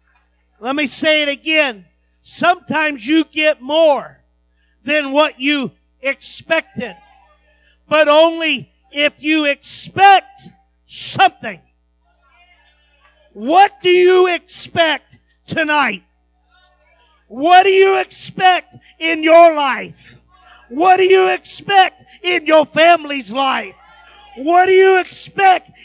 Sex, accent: male, American